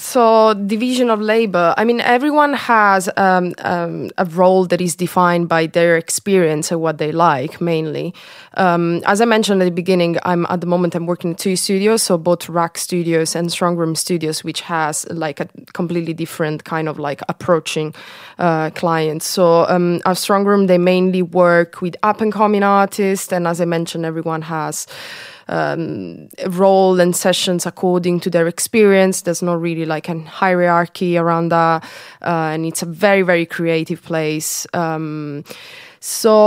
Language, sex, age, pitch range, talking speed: English, female, 20-39, 165-195 Hz, 165 wpm